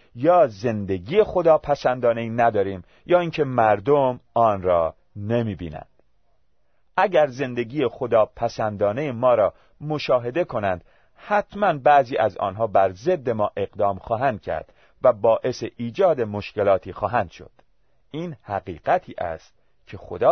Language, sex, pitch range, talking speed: Persian, male, 105-140 Hz, 125 wpm